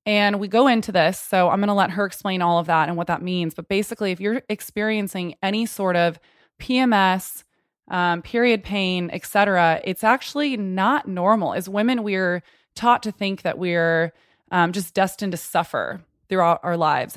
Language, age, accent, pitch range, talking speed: English, 20-39, American, 175-215 Hz, 185 wpm